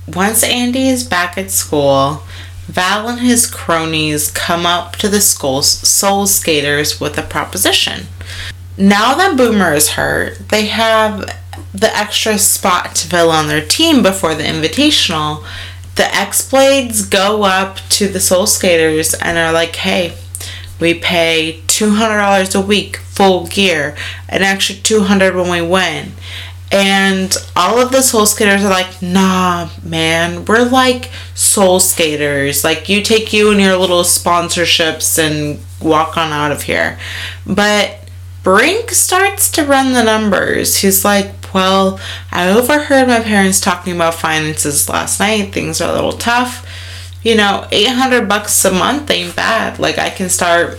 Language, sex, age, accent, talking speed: English, female, 30-49, American, 150 wpm